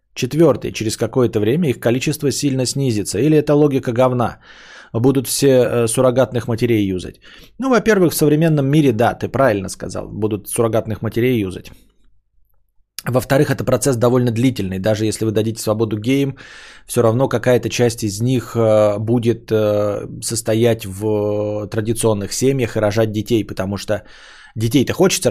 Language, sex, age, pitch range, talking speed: Bulgarian, male, 20-39, 110-135 Hz, 140 wpm